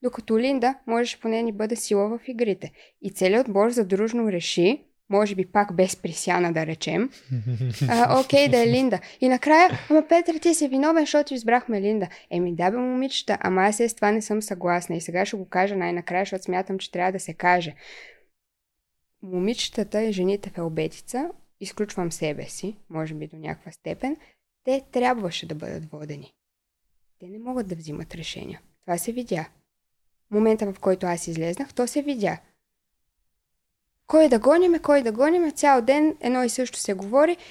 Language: Bulgarian